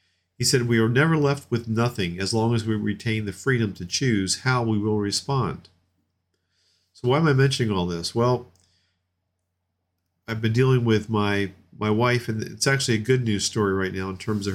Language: English